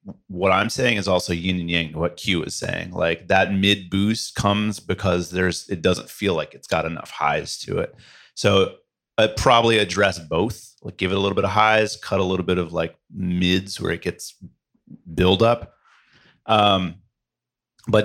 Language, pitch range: English, 90-105 Hz